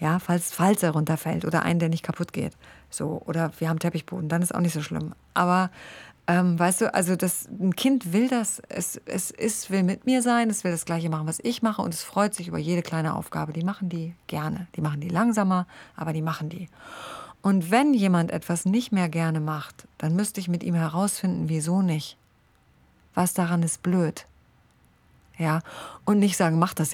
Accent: German